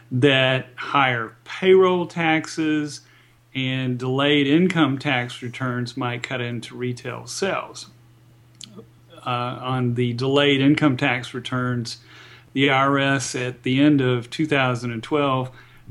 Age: 40-59